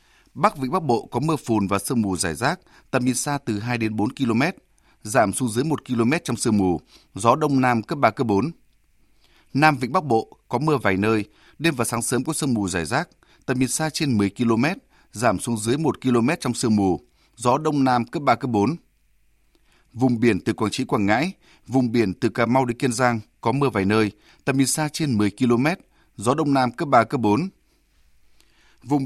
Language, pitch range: Vietnamese, 110-140 Hz